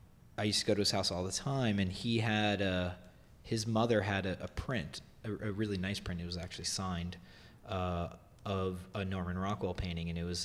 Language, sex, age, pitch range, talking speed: English, male, 30-49, 90-105 Hz, 220 wpm